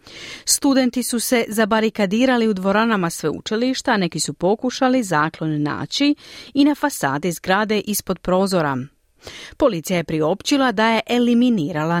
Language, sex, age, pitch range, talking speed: Croatian, female, 40-59, 160-245 Hz, 120 wpm